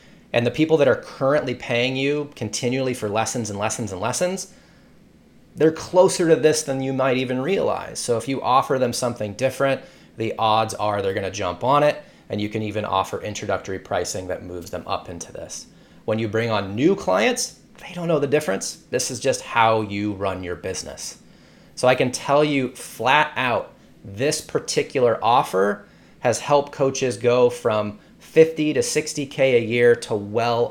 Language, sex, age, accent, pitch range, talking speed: English, male, 30-49, American, 110-140 Hz, 180 wpm